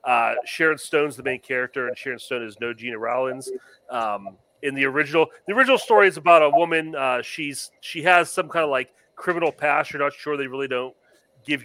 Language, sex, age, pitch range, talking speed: English, male, 40-59, 130-160 Hz, 210 wpm